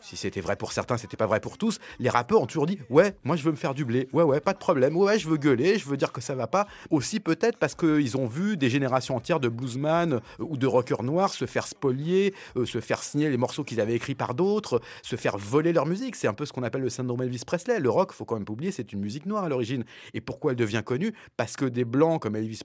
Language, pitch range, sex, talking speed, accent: French, 120-180 Hz, male, 285 wpm, French